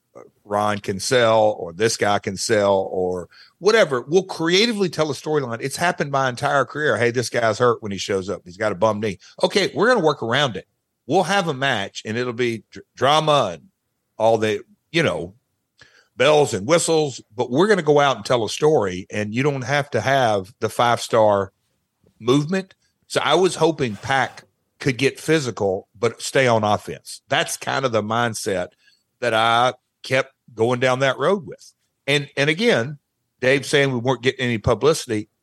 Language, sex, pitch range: English, male, 105-145 Hz